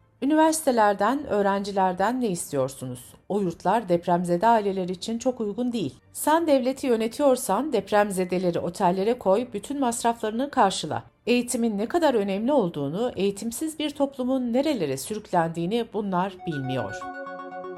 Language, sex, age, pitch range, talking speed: Turkish, female, 60-79, 170-245 Hz, 110 wpm